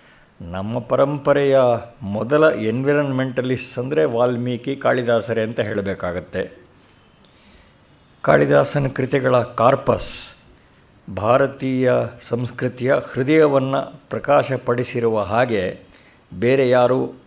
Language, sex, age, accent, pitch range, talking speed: Kannada, male, 50-69, native, 115-135 Hz, 65 wpm